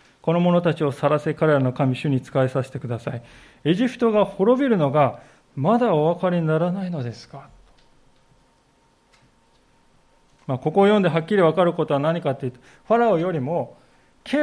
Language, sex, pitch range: Japanese, male, 135-200 Hz